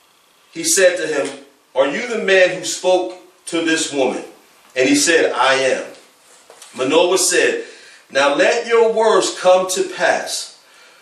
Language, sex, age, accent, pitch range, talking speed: English, male, 40-59, American, 160-240 Hz, 145 wpm